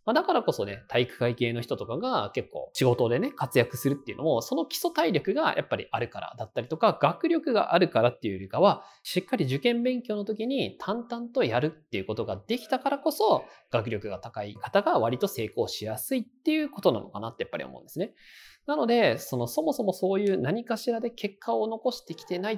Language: Japanese